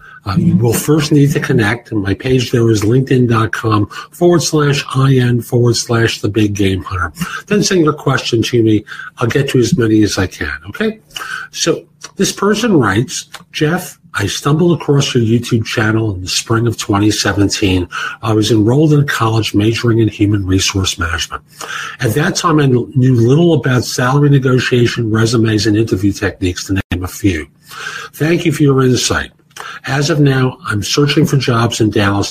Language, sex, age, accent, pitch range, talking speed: English, male, 50-69, American, 105-145 Hz, 175 wpm